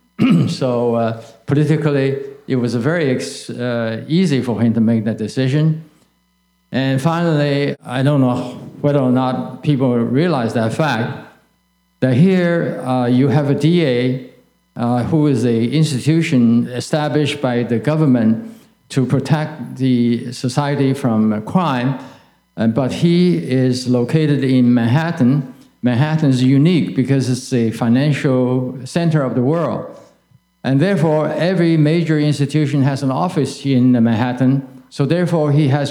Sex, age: male, 50-69